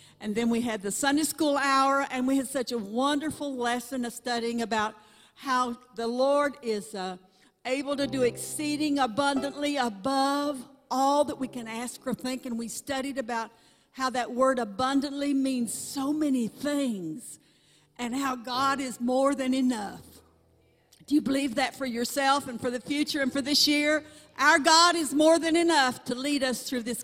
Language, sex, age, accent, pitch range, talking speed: English, female, 60-79, American, 220-270 Hz, 180 wpm